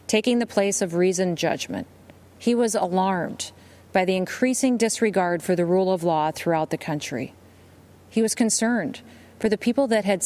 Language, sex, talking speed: English, female, 170 wpm